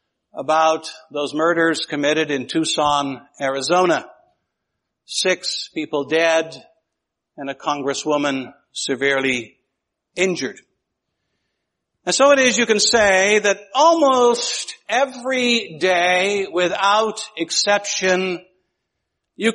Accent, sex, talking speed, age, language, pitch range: American, male, 90 wpm, 60-79, English, 160-215 Hz